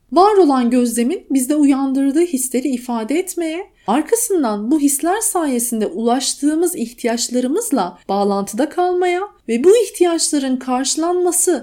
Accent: native